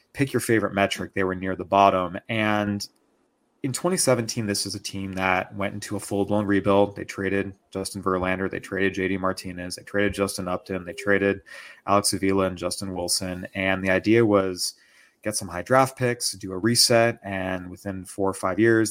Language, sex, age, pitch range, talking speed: English, male, 30-49, 95-105 Hz, 190 wpm